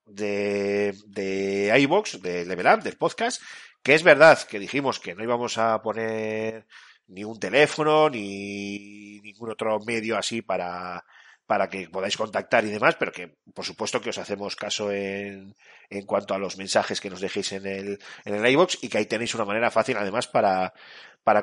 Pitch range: 100-130 Hz